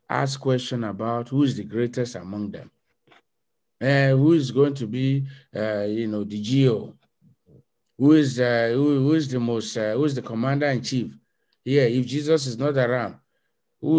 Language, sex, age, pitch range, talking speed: English, male, 50-69, 110-145 Hz, 180 wpm